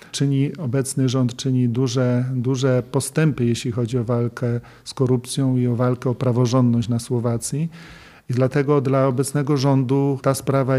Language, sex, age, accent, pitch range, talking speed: Polish, male, 40-59, native, 125-145 Hz, 150 wpm